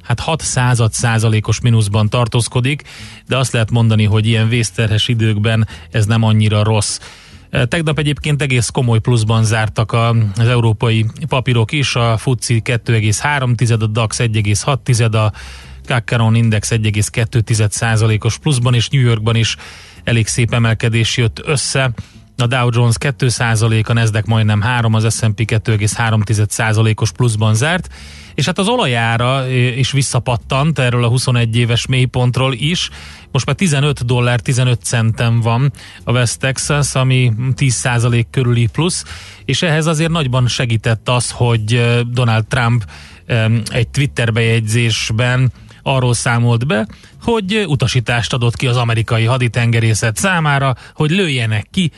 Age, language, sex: 30-49, Hungarian, male